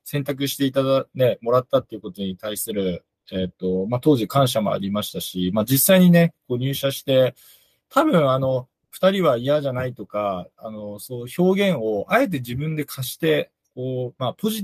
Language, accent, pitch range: Japanese, native, 100-145 Hz